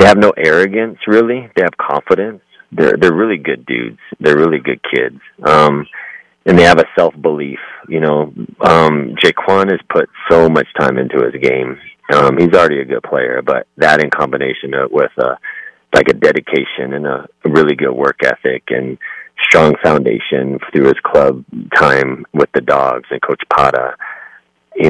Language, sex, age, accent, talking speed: English, male, 30-49, American, 165 wpm